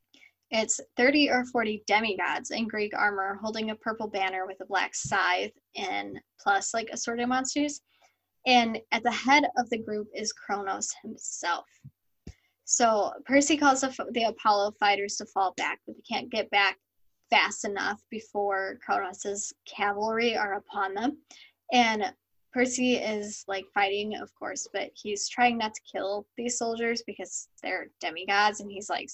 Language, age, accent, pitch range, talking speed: English, 10-29, American, 205-245 Hz, 155 wpm